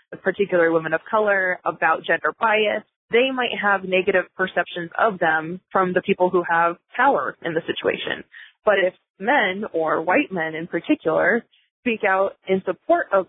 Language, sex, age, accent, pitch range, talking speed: English, female, 20-39, American, 175-210 Hz, 165 wpm